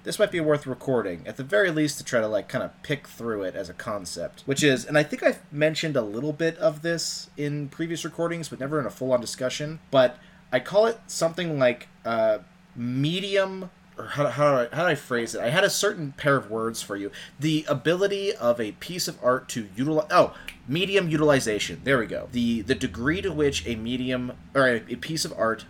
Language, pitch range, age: English, 110-155 Hz, 30-49